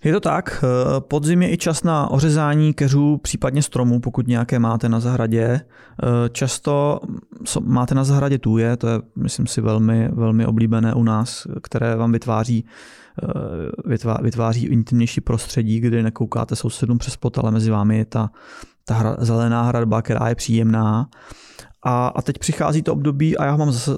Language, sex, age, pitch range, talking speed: Czech, male, 20-39, 110-135 Hz, 160 wpm